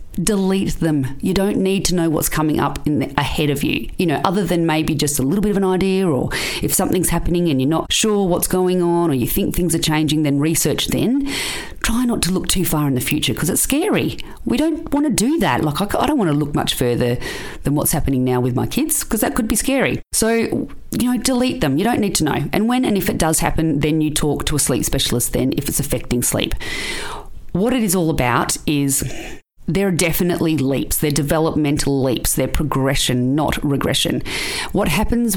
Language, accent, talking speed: English, Australian, 225 wpm